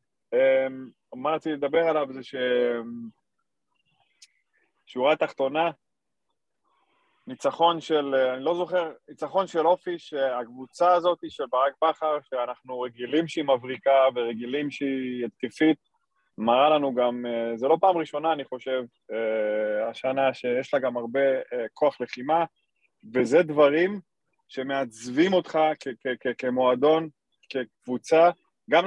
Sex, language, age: male, Hebrew, 20-39